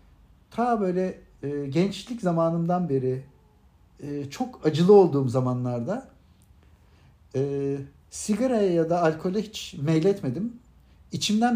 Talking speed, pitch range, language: 100 wpm, 130-195 Hz, Turkish